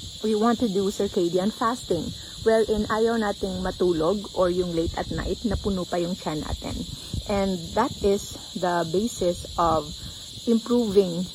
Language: English